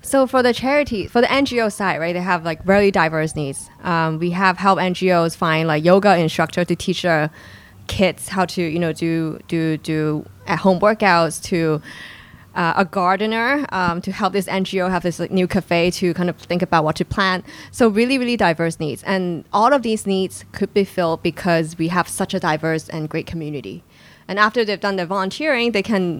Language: English